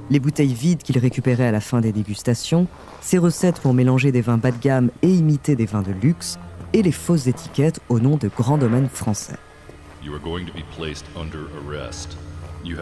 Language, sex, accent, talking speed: French, female, French, 165 wpm